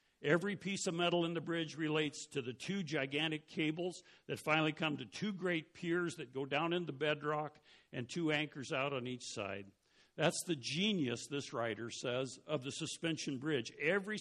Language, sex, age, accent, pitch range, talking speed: English, male, 60-79, American, 125-160 Hz, 185 wpm